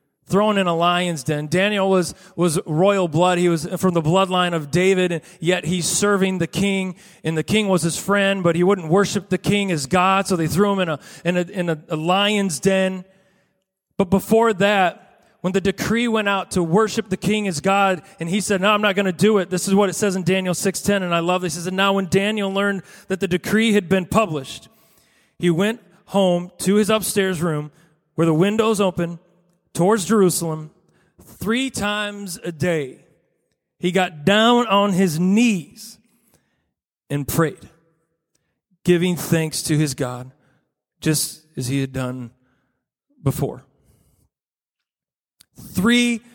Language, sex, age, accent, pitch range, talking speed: English, male, 30-49, American, 165-200 Hz, 175 wpm